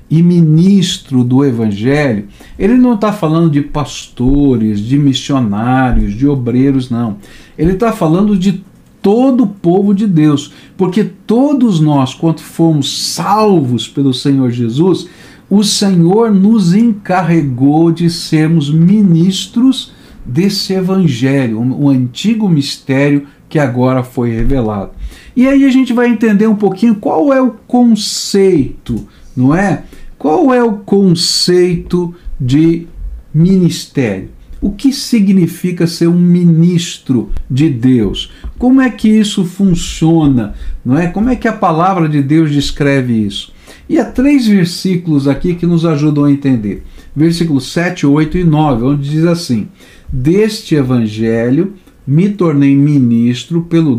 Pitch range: 135-195 Hz